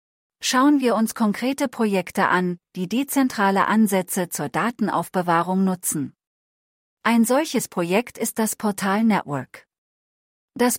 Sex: female